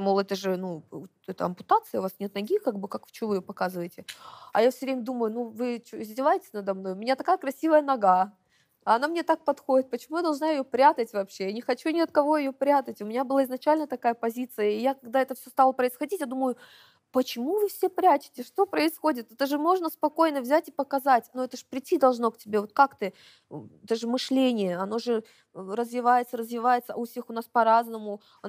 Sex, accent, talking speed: female, native, 215 wpm